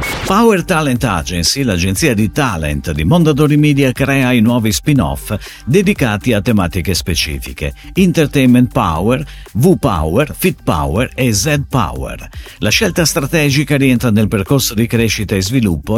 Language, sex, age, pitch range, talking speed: Italian, male, 50-69, 90-140 Hz, 130 wpm